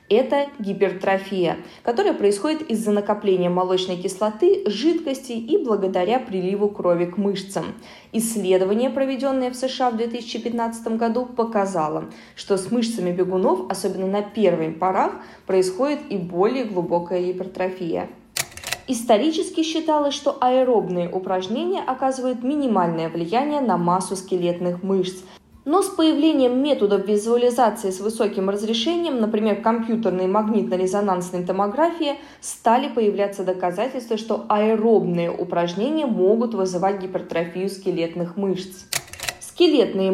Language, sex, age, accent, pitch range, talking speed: Russian, female, 20-39, native, 185-260 Hz, 110 wpm